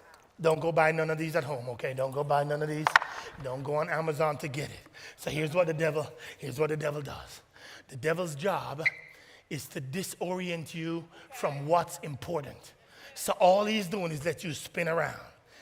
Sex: male